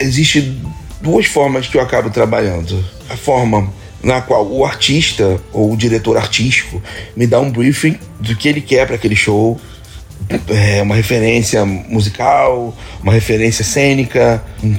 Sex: male